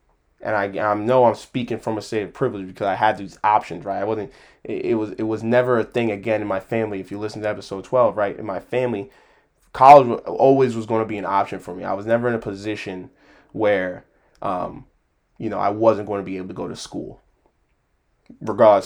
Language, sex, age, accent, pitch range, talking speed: English, male, 20-39, American, 100-125 Hz, 230 wpm